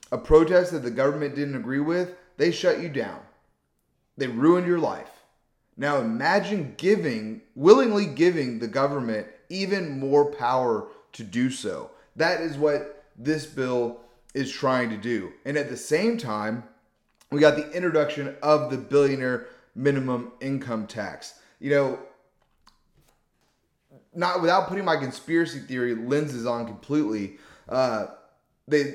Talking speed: 135 wpm